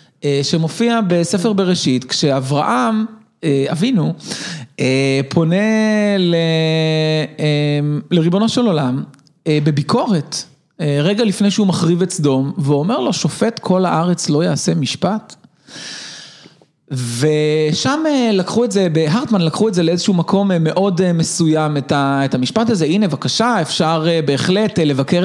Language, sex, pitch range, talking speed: Hebrew, male, 155-200 Hz, 105 wpm